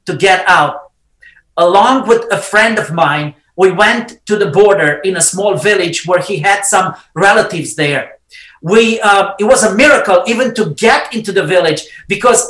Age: 40-59